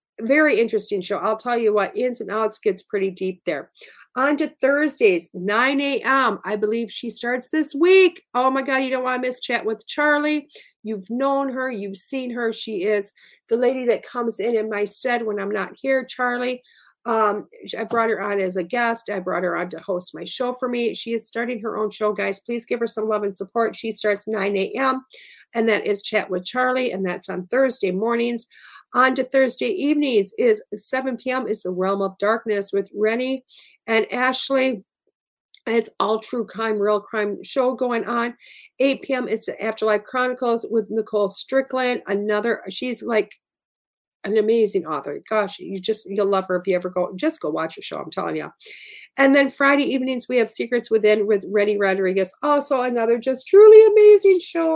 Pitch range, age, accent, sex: 205-260 Hz, 50-69, American, female